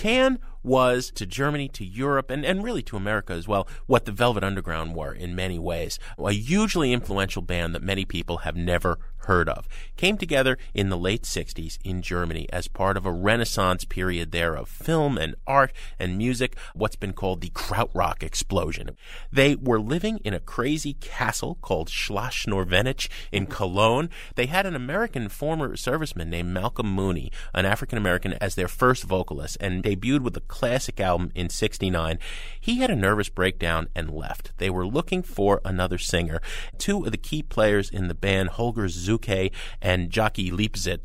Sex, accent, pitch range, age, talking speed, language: male, American, 90-120 Hz, 30-49, 175 wpm, English